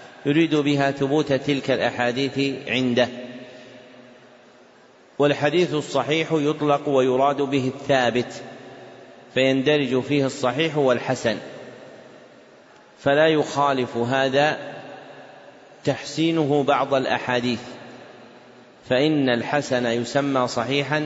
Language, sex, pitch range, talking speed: Arabic, male, 125-145 Hz, 75 wpm